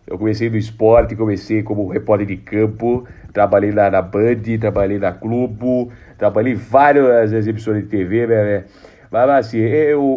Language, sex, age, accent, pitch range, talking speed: Portuguese, male, 40-59, Brazilian, 105-125 Hz, 160 wpm